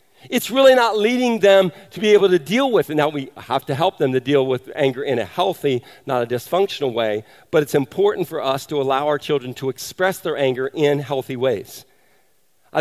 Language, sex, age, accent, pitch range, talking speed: English, male, 50-69, American, 135-170 Hz, 215 wpm